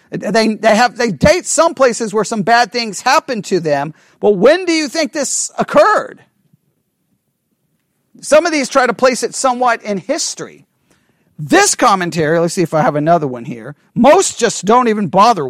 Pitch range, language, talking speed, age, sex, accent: 180-270 Hz, English, 180 wpm, 40-59, male, American